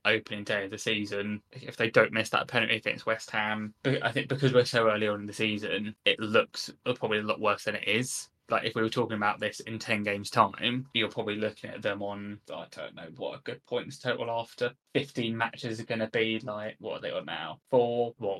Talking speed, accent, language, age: 250 wpm, British, English, 10-29